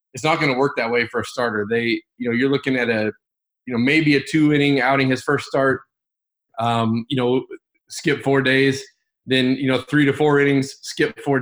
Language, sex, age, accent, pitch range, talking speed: English, male, 20-39, American, 120-140 Hz, 215 wpm